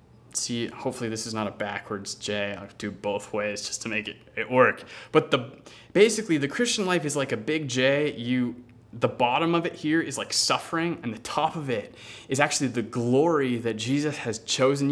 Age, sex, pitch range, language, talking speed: 20-39, male, 120-175 Hz, English, 205 wpm